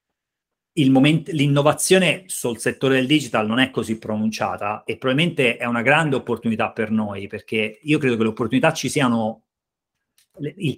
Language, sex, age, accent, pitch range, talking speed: Italian, male, 30-49, native, 110-140 Hz, 155 wpm